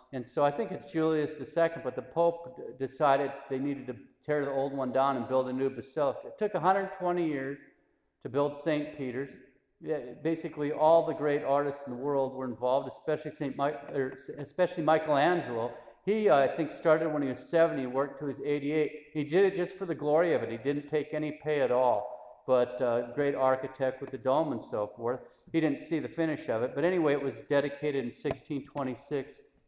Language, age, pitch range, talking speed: English, 50-69, 135-165 Hz, 205 wpm